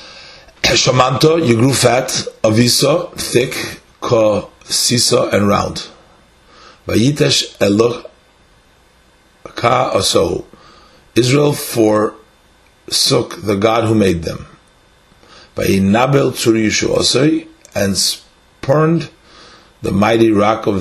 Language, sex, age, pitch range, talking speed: English, male, 50-69, 90-120 Hz, 90 wpm